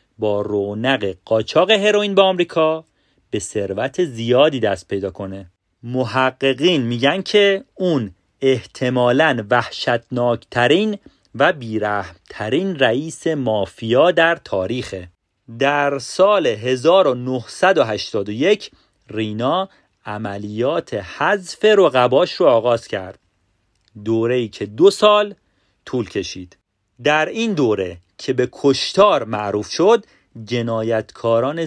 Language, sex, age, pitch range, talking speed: Persian, male, 40-59, 105-160 Hz, 95 wpm